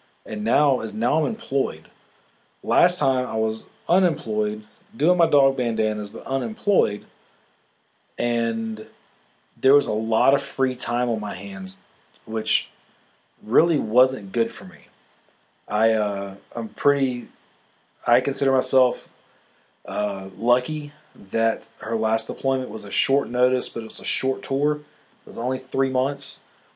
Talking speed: 140 wpm